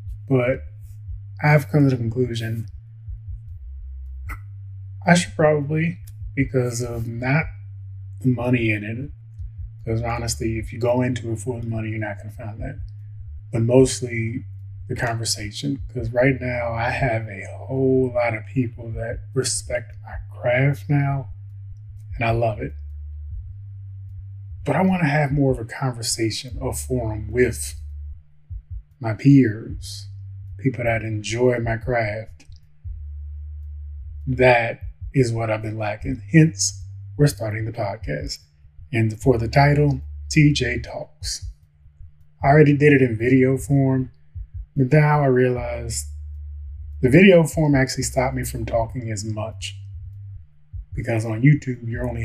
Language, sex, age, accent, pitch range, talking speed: English, male, 20-39, American, 95-125 Hz, 135 wpm